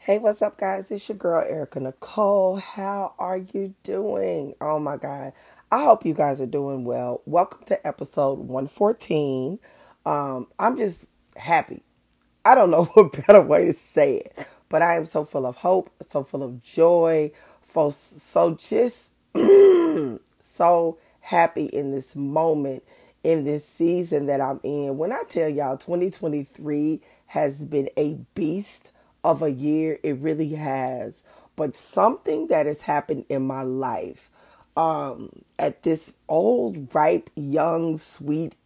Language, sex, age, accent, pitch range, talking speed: English, female, 30-49, American, 140-175 Hz, 145 wpm